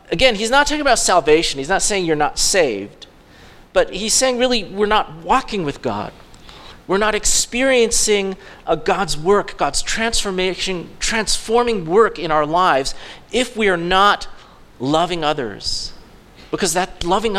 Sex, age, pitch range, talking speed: male, 40-59, 160-230 Hz, 150 wpm